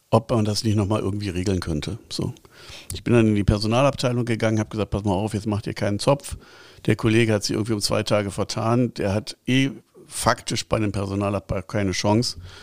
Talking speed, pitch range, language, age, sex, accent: 205 wpm, 100-120 Hz, German, 60-79, male, German